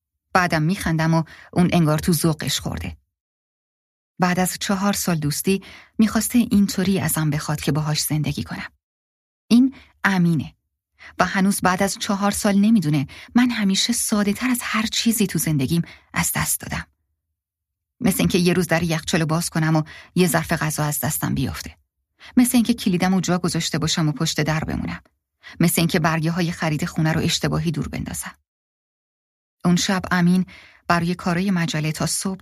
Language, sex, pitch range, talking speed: Persian, female, 145-185 Hz, 160 wpm